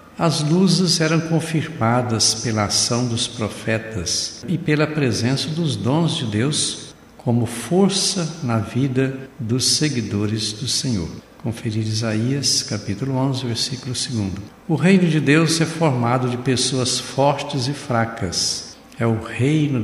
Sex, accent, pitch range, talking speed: male, Brazilian, 110-150 Hz, 130 wpm